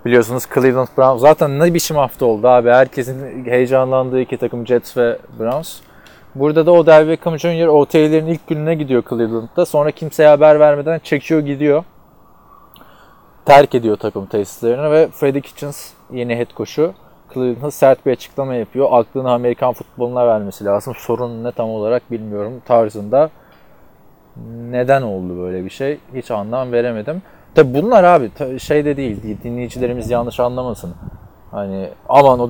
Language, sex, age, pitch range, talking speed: Turkish, male, 20-39, 115-145 Hz, 150 wpm